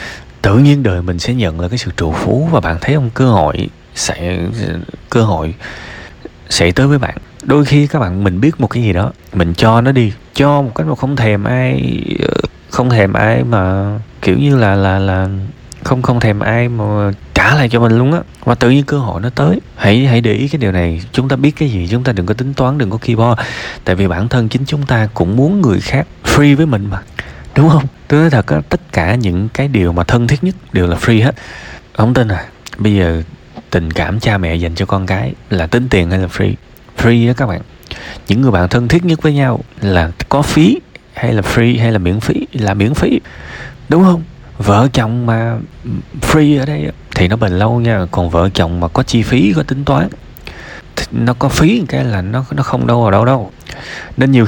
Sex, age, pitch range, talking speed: male, 20-39, 95-130 Hz, 230 wpm